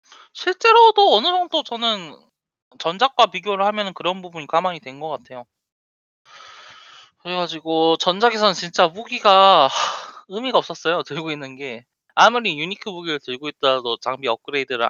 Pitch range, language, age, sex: 130-195 Hz, Korean, 20-39, male